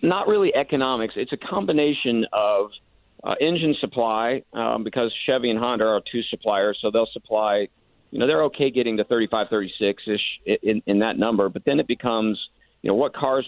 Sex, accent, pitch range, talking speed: male, American, 95-125 Hz, 180 wpm